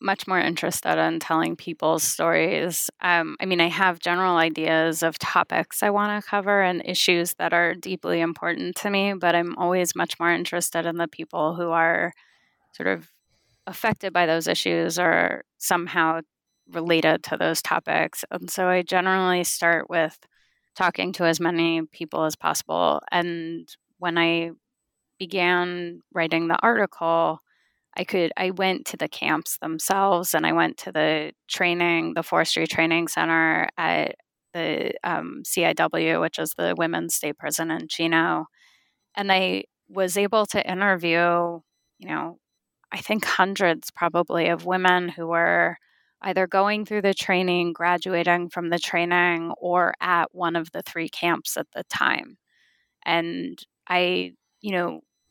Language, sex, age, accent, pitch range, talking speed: English, female, 20-39, American, 165-185 Hz, 150 wpm